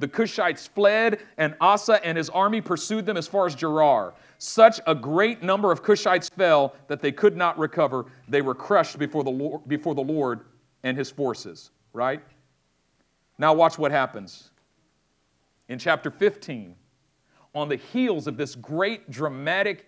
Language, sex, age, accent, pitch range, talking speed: English, male, 50-69, American, 130-175 Hz, 150 wpm